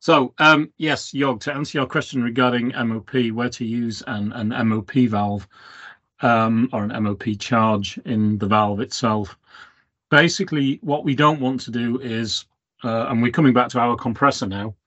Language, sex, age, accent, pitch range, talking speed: English, male, 40-59, British, 110-130 Hz, 175 wpm